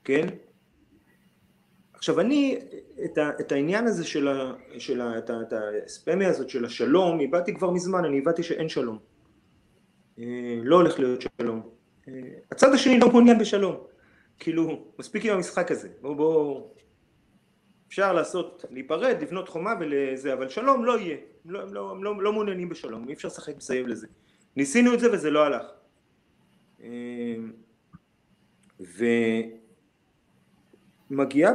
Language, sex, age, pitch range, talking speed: Hebrew, male, 30-49, 125-195 Hz, 130 wpm